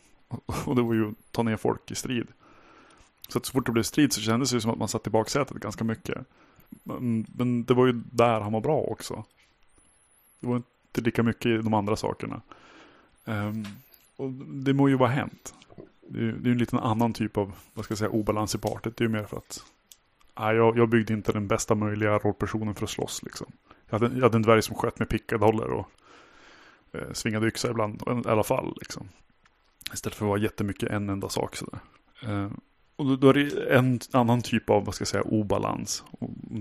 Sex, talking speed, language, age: male, 225 wpm, Swedish, 30-49